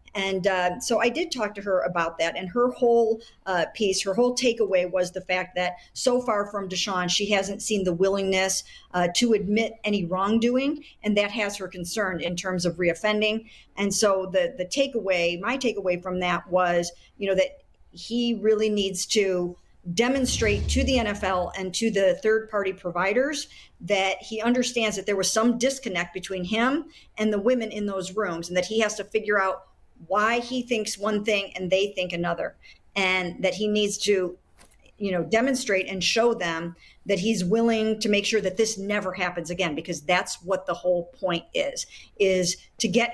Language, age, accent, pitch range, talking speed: English, 50-69, American, 180-220 Hz, 190 wpm